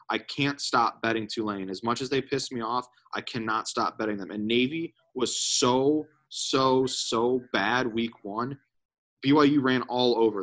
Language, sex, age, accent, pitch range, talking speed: English, male, 20-39, American, 100-125 Hz, 175 wpm